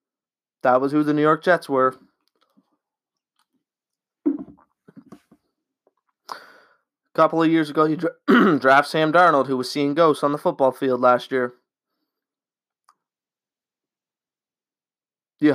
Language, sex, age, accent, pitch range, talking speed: English, male, 20-39, American, 130-180 Hz, 110 wpm